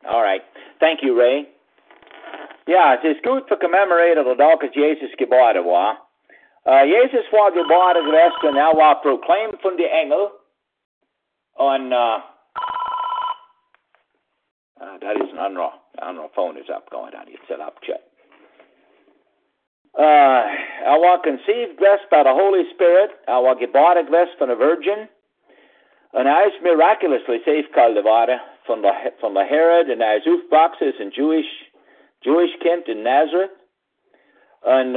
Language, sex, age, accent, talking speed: English, male, 60-79, American, 135 wpm